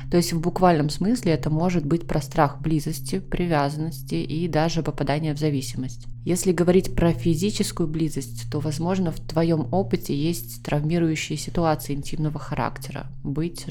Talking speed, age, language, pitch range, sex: 145 wpm, 20-39, Russian, 140-165 Hz, female